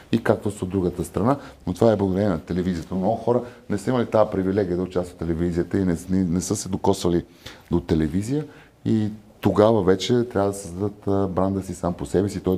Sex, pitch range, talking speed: male, 90-120 Hz, 210 wpm